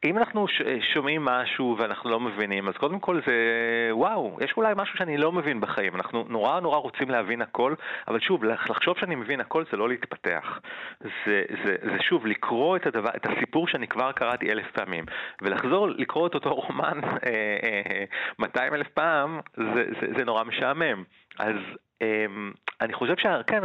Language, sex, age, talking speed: Hebrew, male, 30-49, 175 wpm